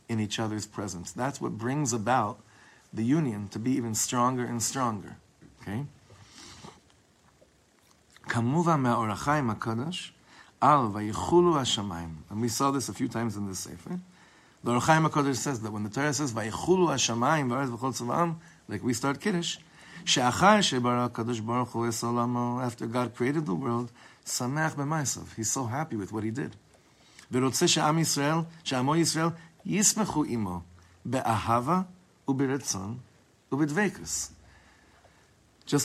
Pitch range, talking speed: 110-145 Hz, 105 wpm